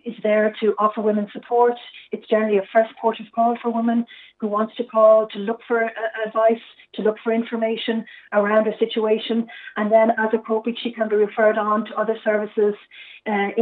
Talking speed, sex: 195 wpm, female